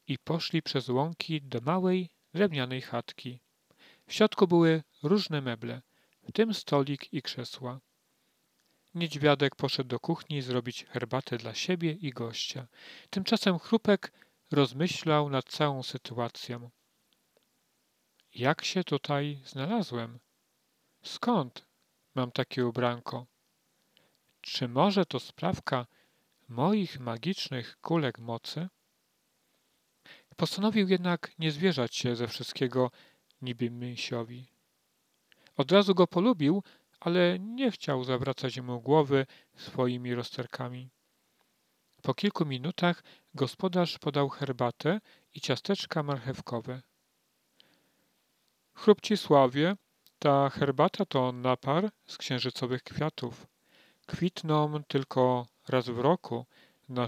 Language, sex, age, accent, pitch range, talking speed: Polish, male, 40-59, native, 125-175 Hz, 100 wpm